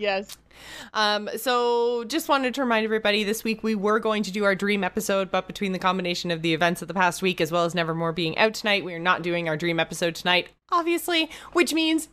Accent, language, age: American, English, 20-39